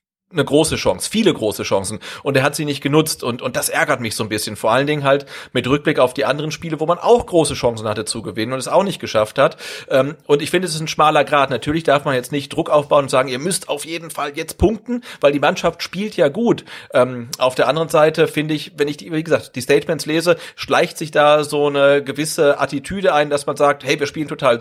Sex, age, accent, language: male, 40-59, German, German